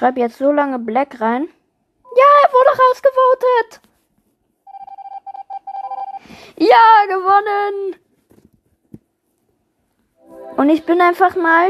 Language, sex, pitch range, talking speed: German, female, 220-365 Hz, 85 wpm